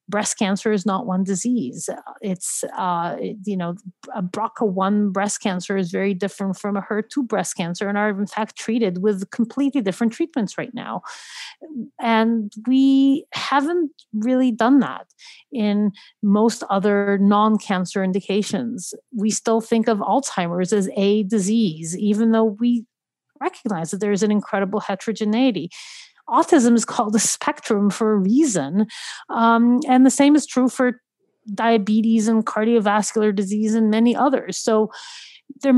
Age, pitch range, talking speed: 40-59, 200-235 Hz, 145 wpm